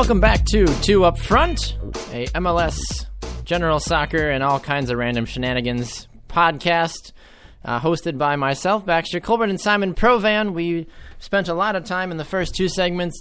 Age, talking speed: 20-39, 170 wpm